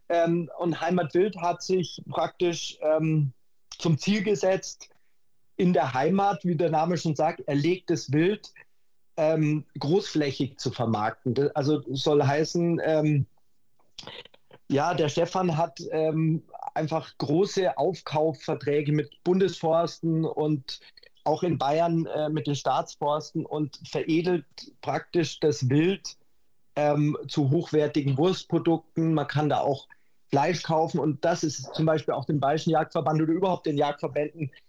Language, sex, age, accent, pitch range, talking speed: German, male, 40-59, German, 150-170 Hz, 130 wpm